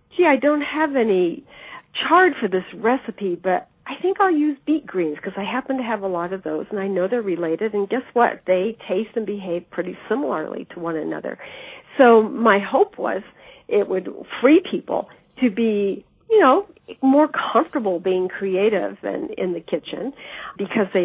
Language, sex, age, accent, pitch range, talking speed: English, female, 50-69, American, 185-245 Hz, 180 wpm